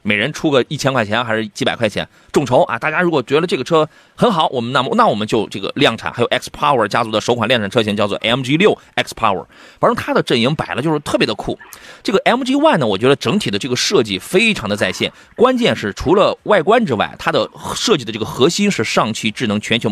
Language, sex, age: Chinese, male, 30-49